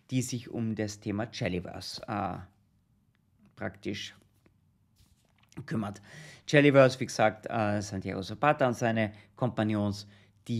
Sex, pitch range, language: male, 105-130 Hz, German